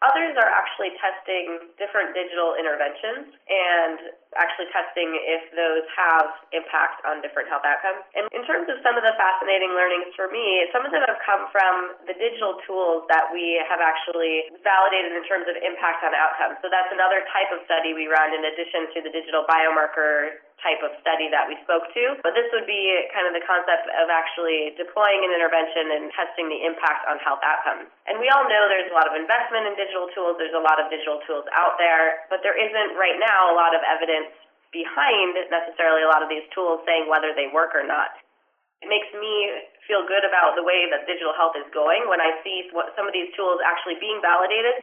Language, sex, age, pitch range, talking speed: English, female, 20-39, 160-190 Hz, 205 wpm